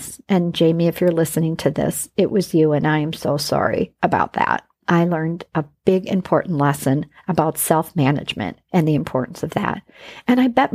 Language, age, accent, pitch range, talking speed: English, 50-69, American, 165-205 Hz, 185 wpm